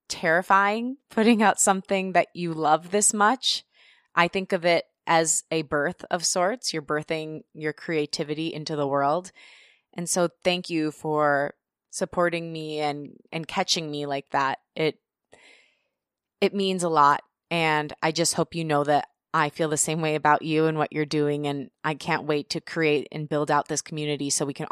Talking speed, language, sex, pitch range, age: 180 wpm, English, female, 155-195 Hz, 20-39